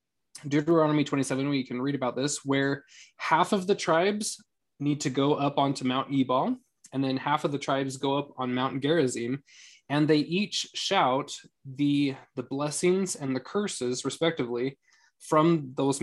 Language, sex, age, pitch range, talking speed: English, male, 20-39, 130-155 Hz, 160 wpm